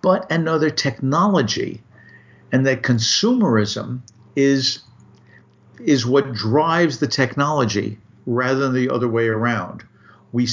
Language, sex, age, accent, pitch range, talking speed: English, male, 50-69, American, 115-140 Hz, 110 wpm